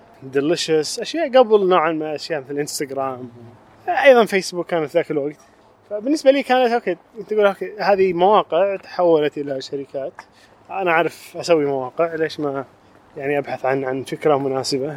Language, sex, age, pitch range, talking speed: Arabic, male, 20-39, 135-190 Hz, 150 wpm